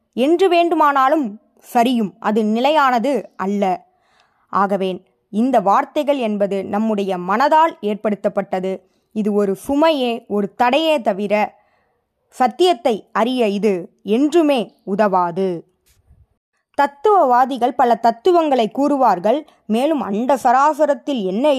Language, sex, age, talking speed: Tamil, female, 20-39, 90 wpm